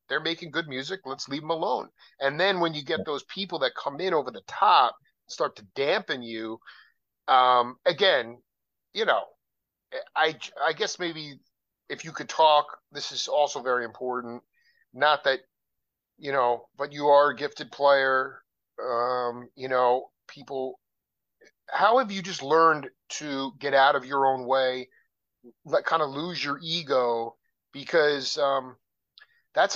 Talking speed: 155 wpm